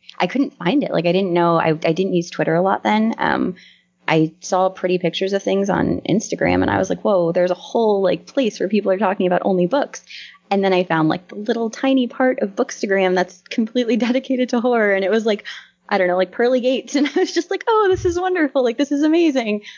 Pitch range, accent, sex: 175-220 Hz, American, female